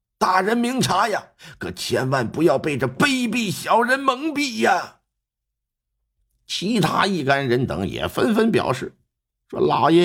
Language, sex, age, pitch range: Chinese, male, 50-69, 145-220 Hz